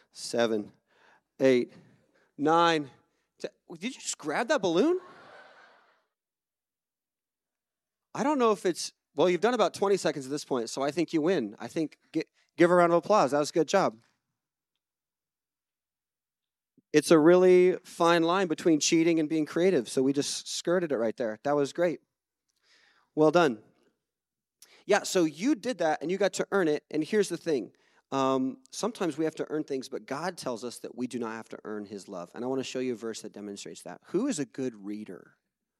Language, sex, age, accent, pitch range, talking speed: English, male, 30-49, American, 120-175 Hz, 190 wpm